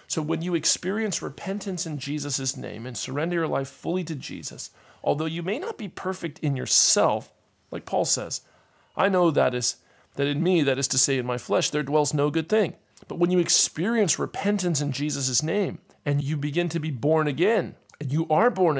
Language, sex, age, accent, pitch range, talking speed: English, male, 40-59, American, 140-180 Hz, 205 wpm